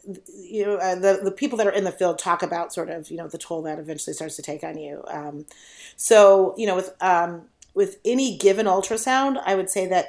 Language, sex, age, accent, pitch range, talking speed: English, female, 40-59, American, 170-205 Hz, 240 wpm